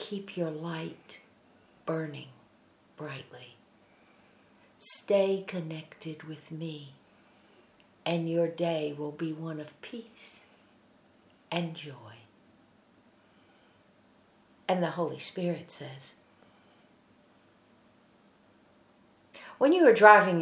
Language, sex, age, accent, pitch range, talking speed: English, female, 60-79, American, 160-195 Hz, 80 wpm